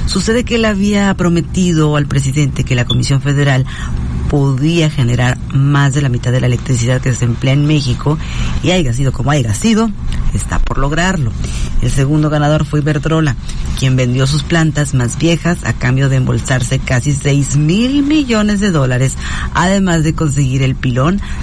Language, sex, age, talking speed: Spanish, female, 40-59, 170 wpm